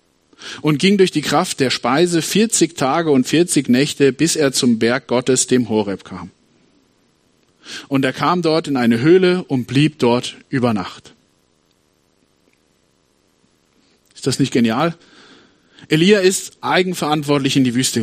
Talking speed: 140 wpm